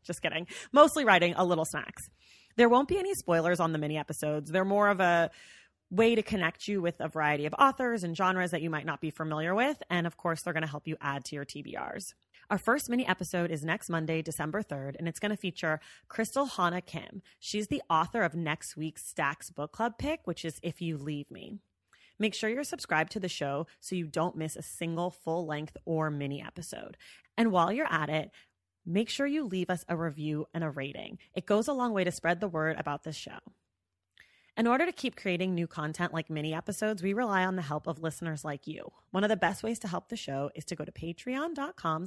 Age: 30-49